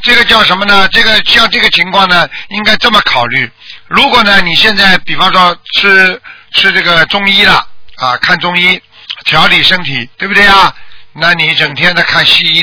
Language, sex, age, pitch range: Chinese, male, 50-69, 180-235 Hz